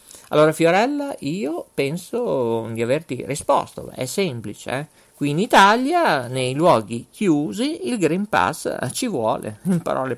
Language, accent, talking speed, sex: Italian, native, 130 wpm, male